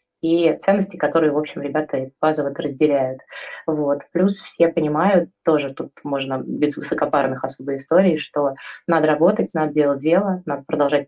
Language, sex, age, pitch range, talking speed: Russian, female, 20-39, 145-165 Hz, 145 wpm